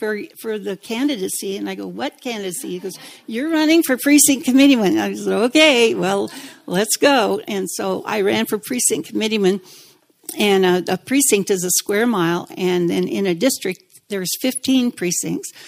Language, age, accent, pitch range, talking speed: English, 60-79, American, 185-235 Hz, 170 wpm